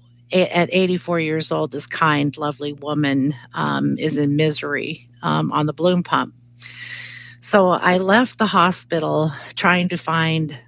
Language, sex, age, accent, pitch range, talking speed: English, female, 50-69, American, 130-170 Hz, 140 wpm